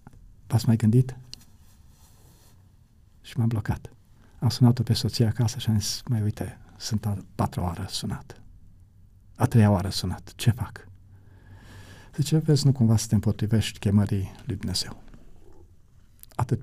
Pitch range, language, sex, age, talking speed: 100-130 Hz, Romanian, male, 50-69, 135 wpm